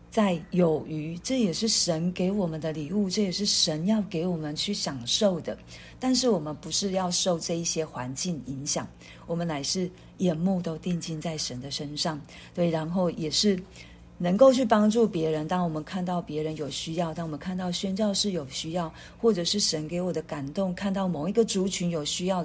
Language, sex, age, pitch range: Chinese, female, 50-69, 155-195 Hz